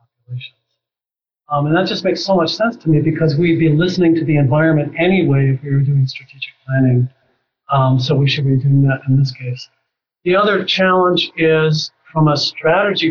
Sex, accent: male, American